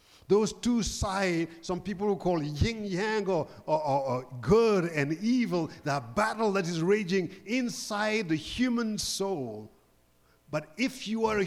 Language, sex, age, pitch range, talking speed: English, male, 50-69, 140-195 Hz, 150 wpm